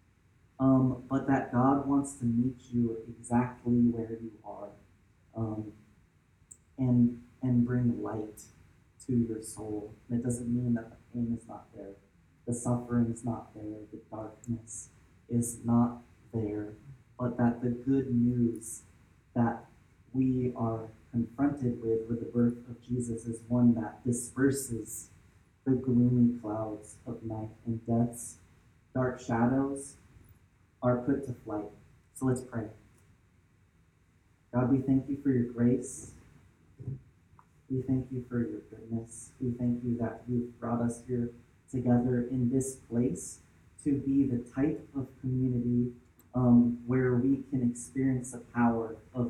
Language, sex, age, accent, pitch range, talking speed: English, male, 30-49, American, 110-125 Hz, 140 wpm